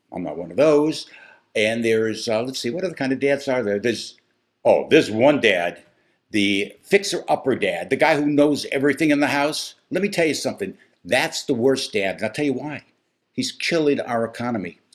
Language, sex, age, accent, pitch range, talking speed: English, male, 60-79, American, 140-215 Hz, 205 wpm